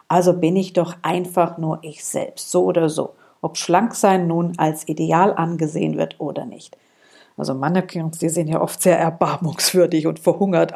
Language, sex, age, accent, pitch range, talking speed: German, female, 50-69, German, 160-195 Hz, 165 wpm